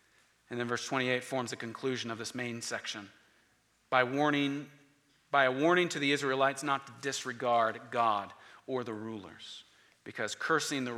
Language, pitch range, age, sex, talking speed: English, 125-160 Hz, 40-59, male, 155 wpm